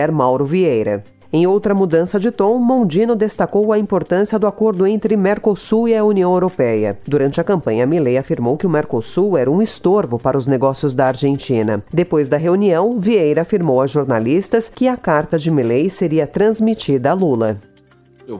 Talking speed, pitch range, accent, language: 170 wpm, 110-160 Hz, Brazilian, Portuguese